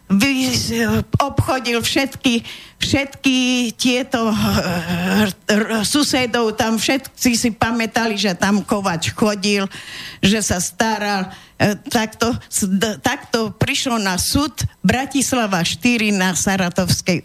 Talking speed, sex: 95 wpm, female